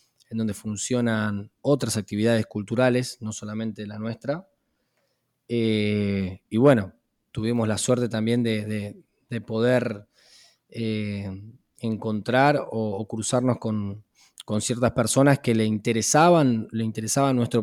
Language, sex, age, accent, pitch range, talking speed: English, male, 20-39, Argentinian, 110-140 Hz, 120 wpm